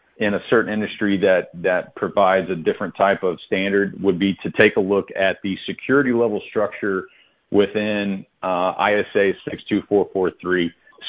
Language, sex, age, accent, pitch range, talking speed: English, male, 40-59, American, 95-110 Hz, 145 wpm